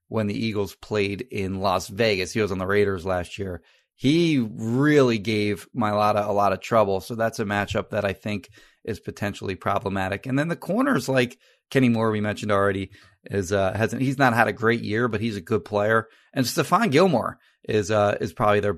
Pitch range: 100-120 Hz